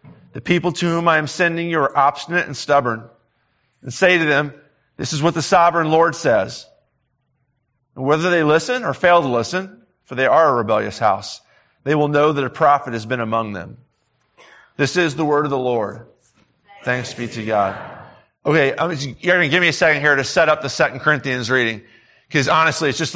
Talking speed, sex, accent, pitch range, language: 200 wpm, male, American, 135-170 Hz, English